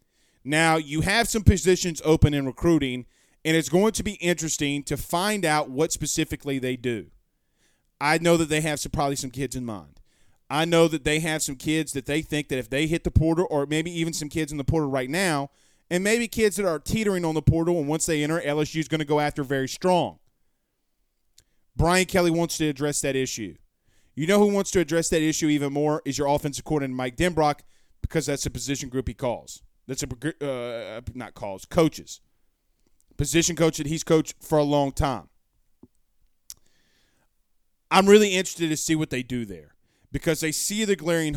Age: 30-49